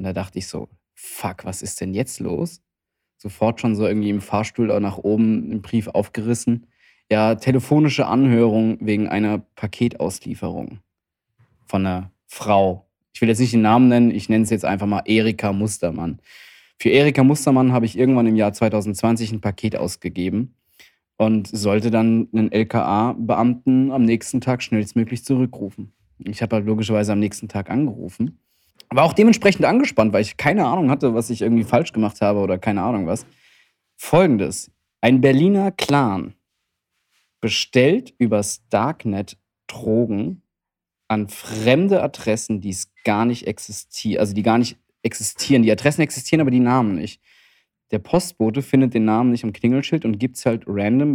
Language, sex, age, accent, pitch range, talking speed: German, male, 20-39, German, 105-120 Hz, 155 wpm